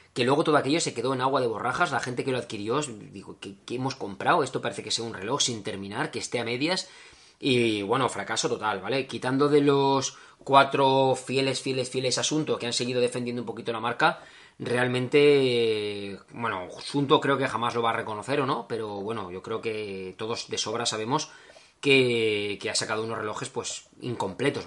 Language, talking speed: Spanish, 200 wpm